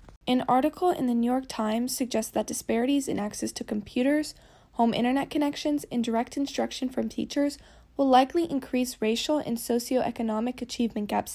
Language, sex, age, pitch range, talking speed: English, female, 10-29, 235-290 Hz, 160 wpm